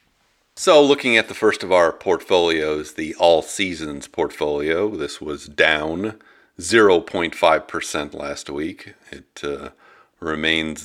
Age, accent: 50-69, American